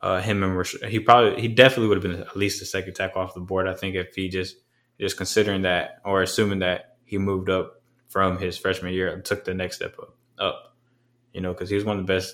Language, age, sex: English, 20-39, male